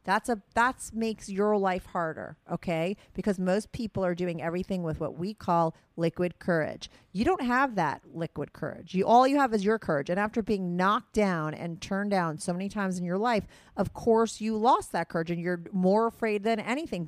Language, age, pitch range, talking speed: English, 40-59, 170-210 Hz, 205 wpm